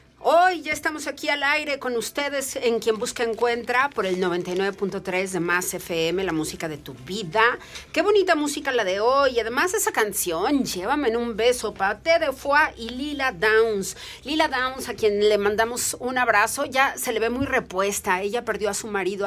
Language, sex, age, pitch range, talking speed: Spanish, female, 40-59, 200-275 Hz, 190 wpm